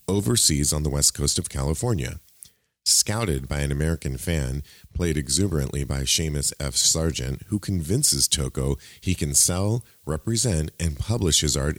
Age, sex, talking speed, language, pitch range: 40-59, male, 150 wpm, English, 70-95 Hz